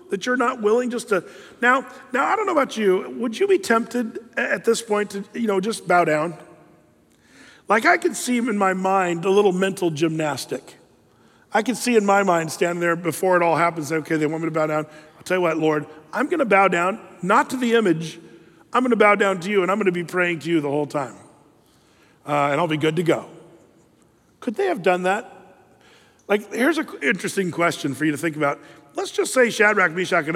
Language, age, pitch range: English, 40-59, 155-210 Hz